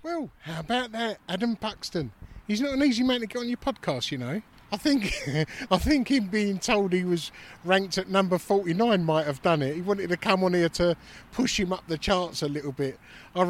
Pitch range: 140-205 Hz